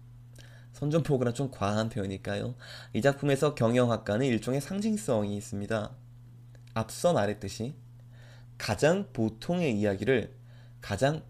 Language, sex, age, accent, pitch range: Korean, male, 20-39, native, 115-135 Hz